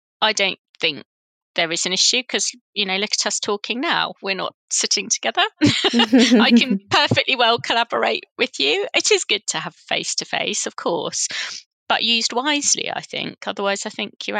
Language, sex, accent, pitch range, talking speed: English, female, British, 185-235 Hz, 180 wpm